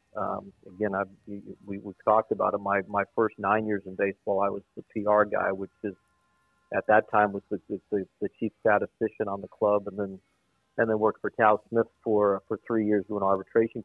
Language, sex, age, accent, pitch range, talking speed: English, male, 50-69, American, 100-110 Hz, 210 wpm